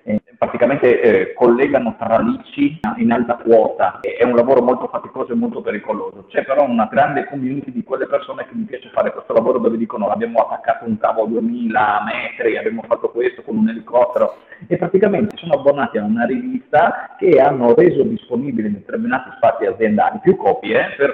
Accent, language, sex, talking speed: native, Italian, male, 180 wpm